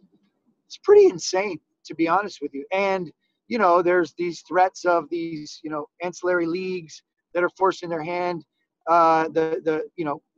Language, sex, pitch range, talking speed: English, male, 170-220 Hz, 175 wpm